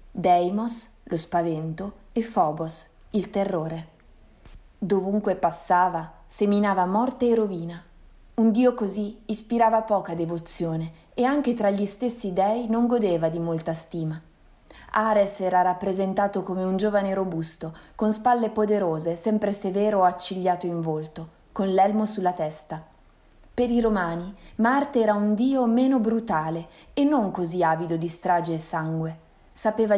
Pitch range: 170-225 Hz